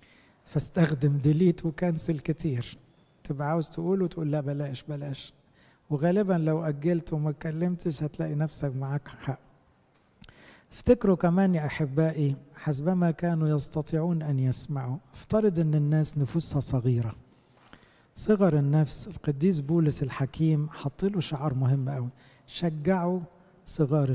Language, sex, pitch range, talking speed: English, male, 140-180 Hz, 115 wpm